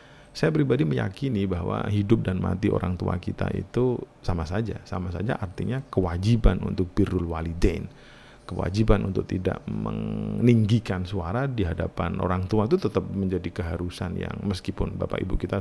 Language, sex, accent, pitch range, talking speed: Indonesian, male, native, 95-120 Hz, 145 wpm